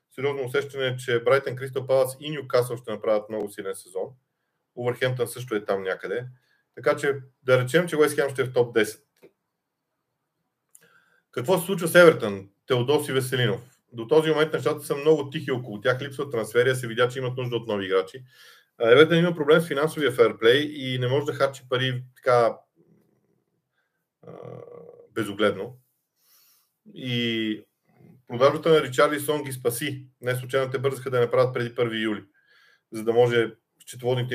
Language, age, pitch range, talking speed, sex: Bulgarian, 40-59, 120-160 Hz, 165 wpm, male